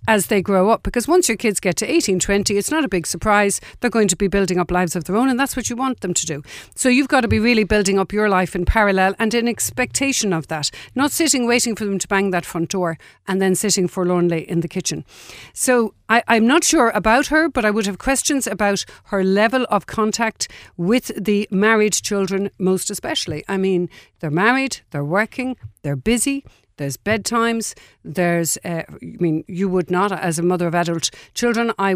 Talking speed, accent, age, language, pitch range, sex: 215 wpm, Irish, 60-79, English, 185-235 Hz, female